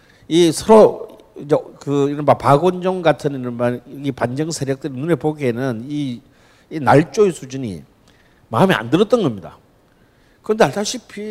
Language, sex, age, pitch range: Korean, male, 50-69, 125-190 Hz